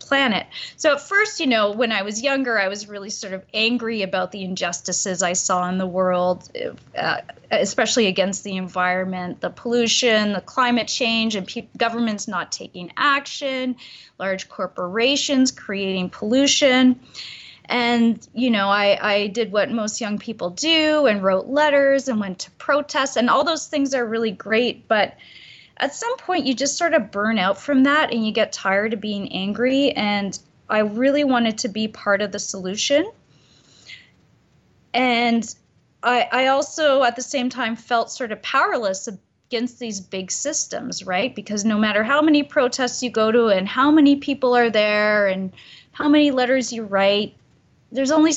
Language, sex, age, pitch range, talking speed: English, female, 20-39, 200-265 Hz, 170 wpm